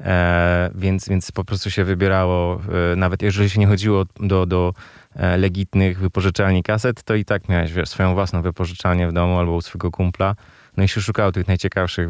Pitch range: 90-105 Hz